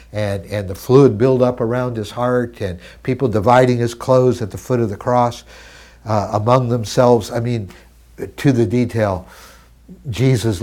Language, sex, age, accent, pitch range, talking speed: English, male, 60-79, American, 105-135 Hz, 165 wpm